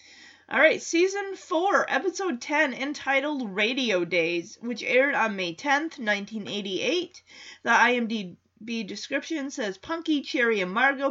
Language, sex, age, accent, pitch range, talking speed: English, female, 30-49, American, 205-300 Hz, 120 wpm